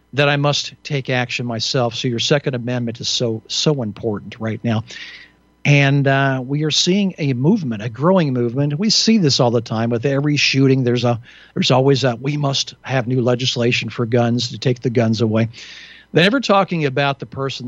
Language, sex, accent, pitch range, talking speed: English, male, American, 120-140 Hz, 195 wpm